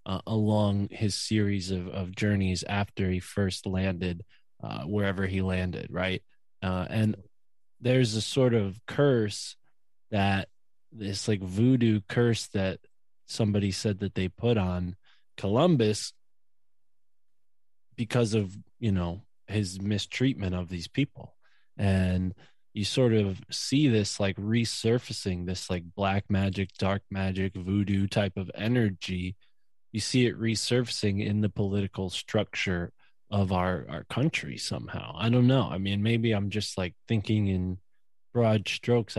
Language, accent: English, American